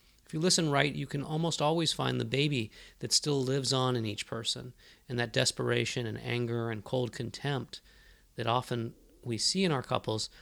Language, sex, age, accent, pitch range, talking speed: English, male, 40-59, American, 115-140 Hz, 190 wpm